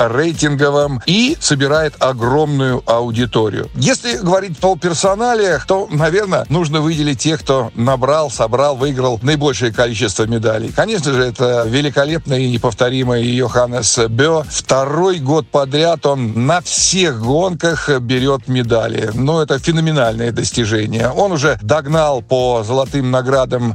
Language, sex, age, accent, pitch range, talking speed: Russian, male, 60-79, native, 125-160 Hz, 125 wpm